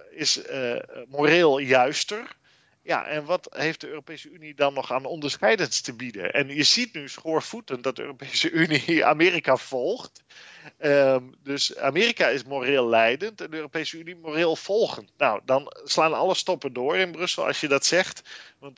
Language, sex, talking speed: Dutch, male, 170 wpm